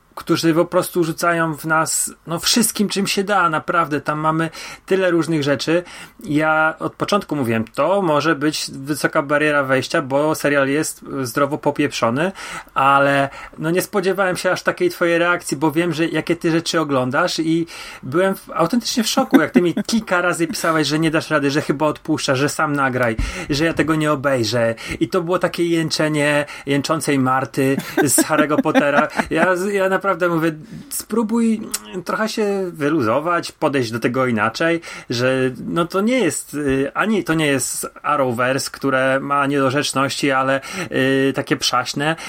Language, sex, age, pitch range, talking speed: Polish, male, 30-49, 135-170 Hz, 160 wpm